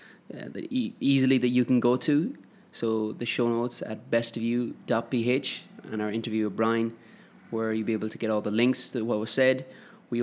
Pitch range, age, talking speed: 110-125 Hz, 20-39, 200 wpm